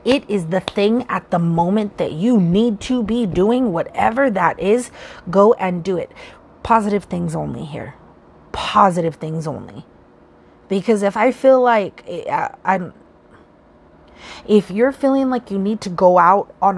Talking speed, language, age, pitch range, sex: 155 wpm, English, 30-49, 185-230 Hz, female